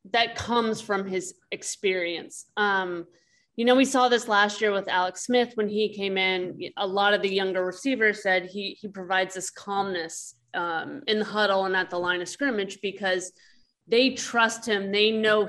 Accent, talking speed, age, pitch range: American, 185 wpm, 20-39, 185-215 Hz